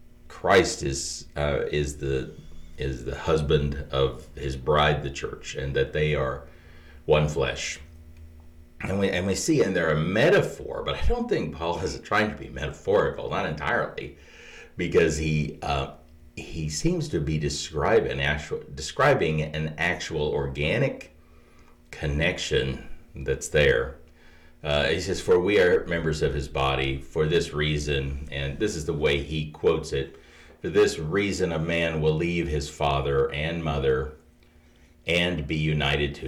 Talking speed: 150 wpm